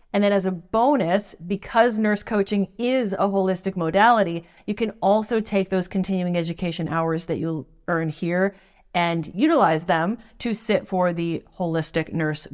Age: 30-49